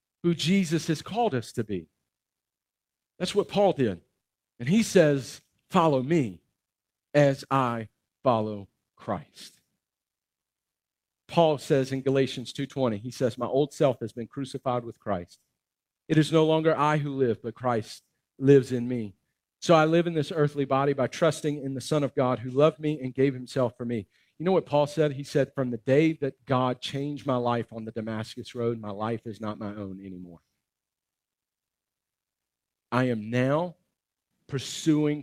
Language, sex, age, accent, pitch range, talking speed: English, male, 50-69, American, 110-145 Hz, 170 wpm